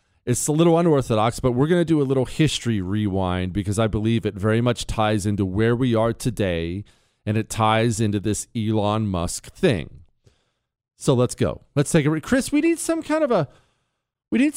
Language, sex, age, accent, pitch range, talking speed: English, male, 40-59, American, 105-160 Hz, 195 wpm